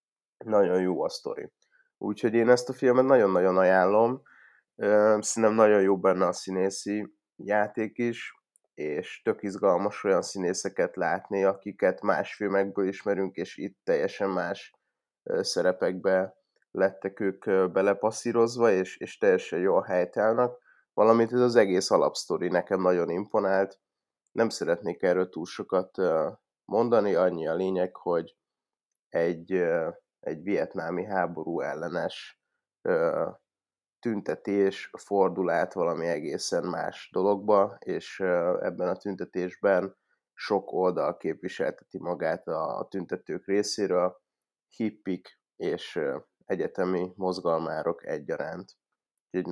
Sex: male